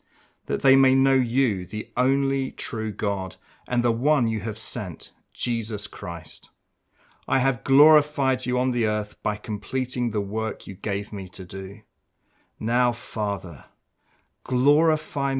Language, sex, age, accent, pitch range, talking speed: English, male, 30-49, British, 100-135 Hz, 140 wpm